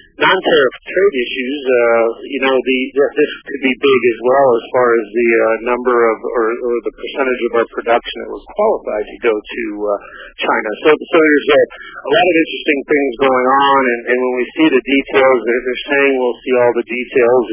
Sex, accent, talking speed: male, American, 210 wpm